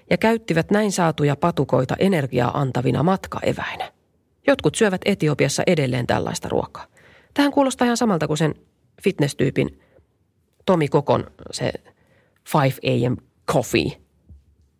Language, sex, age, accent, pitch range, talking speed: Finnish, female, 30-49, native, 140-195 Hz, 110 wpm